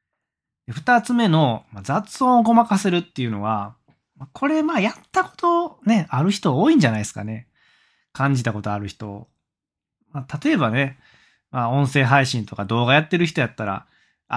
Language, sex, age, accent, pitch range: Japanese, male, 20-39, native, 110-145 Hz